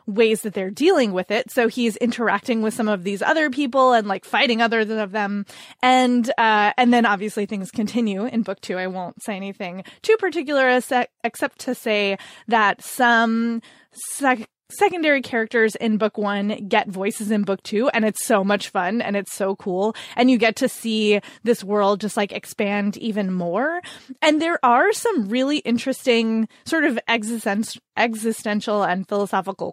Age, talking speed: 20-39, 175 wpm